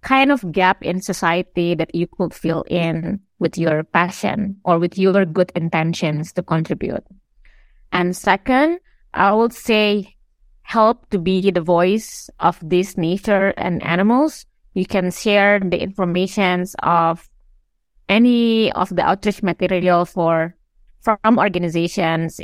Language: English